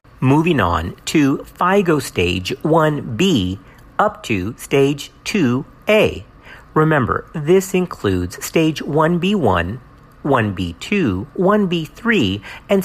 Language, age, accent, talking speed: English, 50-69, American, 85 wpm